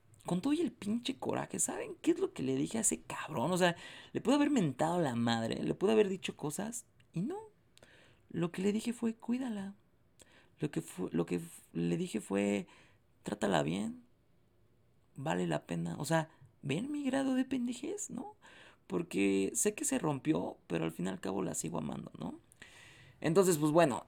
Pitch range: 105-175 Hz